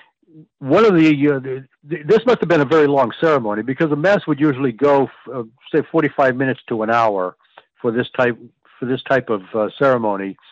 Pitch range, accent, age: 115-145 Hz, American, 60-79